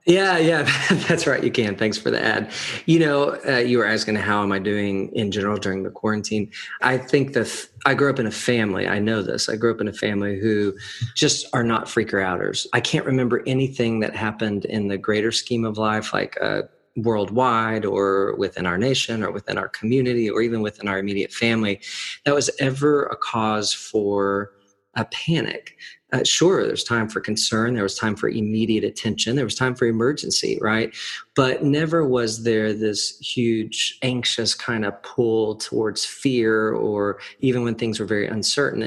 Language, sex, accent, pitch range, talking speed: English, male, American, 105-130 Hz, 190 wpm